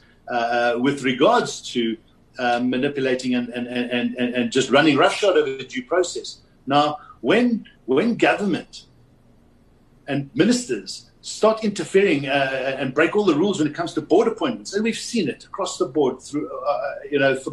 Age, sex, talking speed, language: 50-69, male, 170 wpm, English